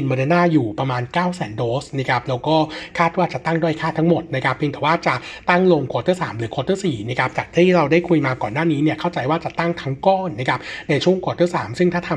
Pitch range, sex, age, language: 135-170 Hz, male, 60-79, Thai